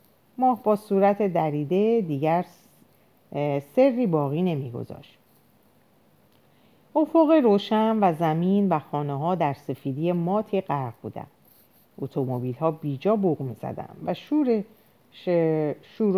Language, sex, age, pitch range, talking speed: Persian, female, 50-69, 145-215 Hz, 105 wpm